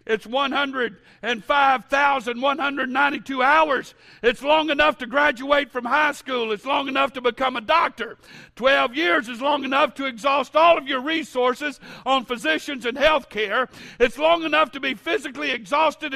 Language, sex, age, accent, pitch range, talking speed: English, male, 60-79, American, 250-305 Hz, 150 wpm